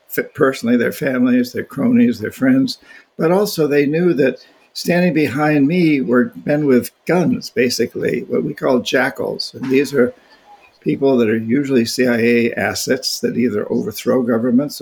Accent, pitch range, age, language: American, 125-200 Hz, 60-79, English